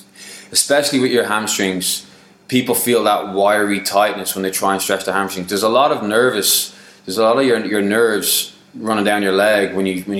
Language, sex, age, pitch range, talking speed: English, male, 20-39, 95-105 Hz, 205 wpm